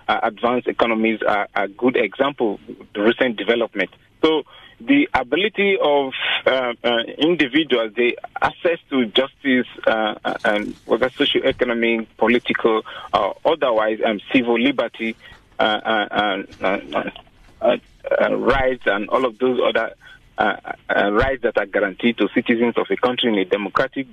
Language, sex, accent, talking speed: English, male, Nigerian, 145 wpm